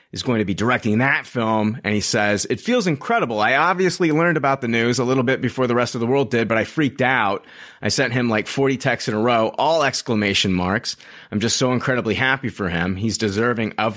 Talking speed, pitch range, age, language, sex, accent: 235 wpm, 105-135 Hz, 30-49, English, male, American